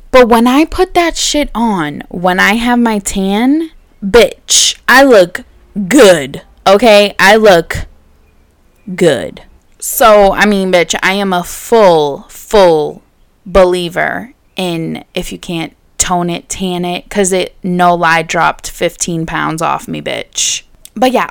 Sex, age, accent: female, 10-29, American